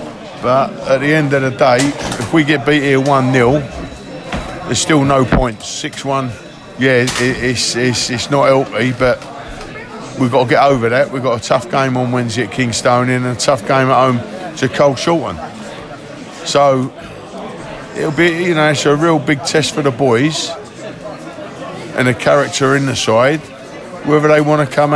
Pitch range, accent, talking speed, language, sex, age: 125-145 Hz, British, 175 wpm, English, male, 50-69